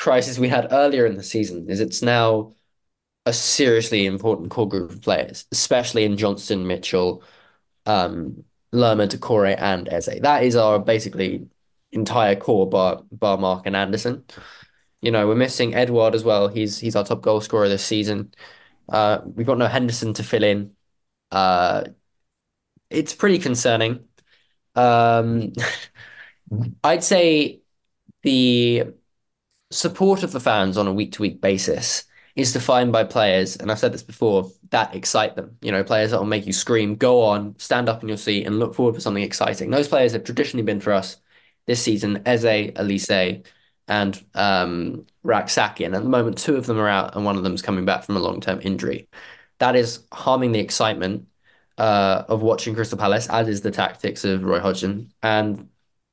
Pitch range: 100-120 Hz